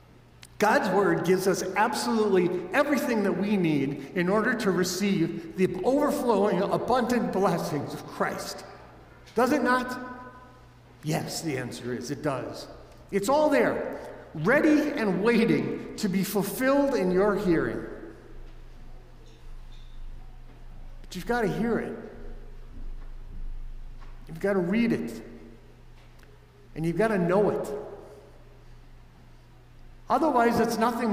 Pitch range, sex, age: 145-210 Hz, male, 50-69